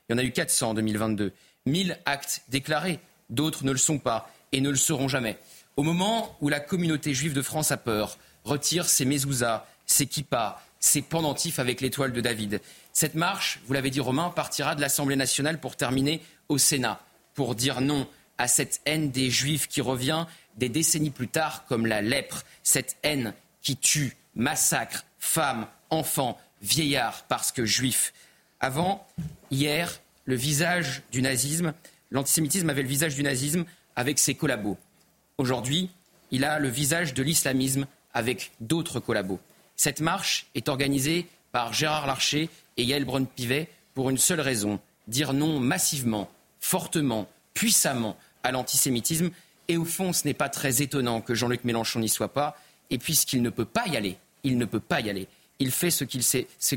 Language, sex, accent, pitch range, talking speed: French, male, French, 125-155 Hz, 170 wpm